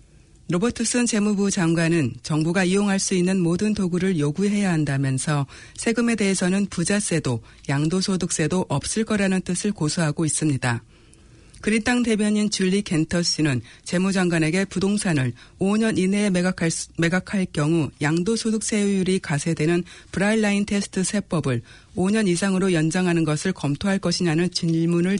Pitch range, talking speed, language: 155-200 Hz, 105 wpm, English